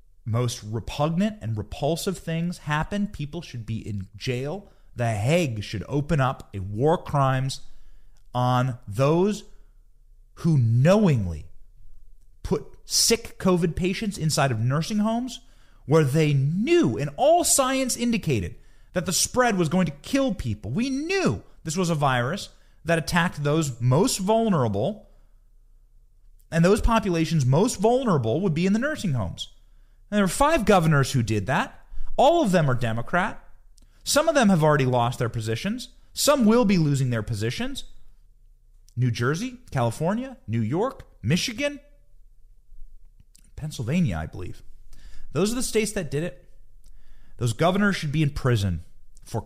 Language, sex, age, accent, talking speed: English, male, 30-49, American, 145 wpm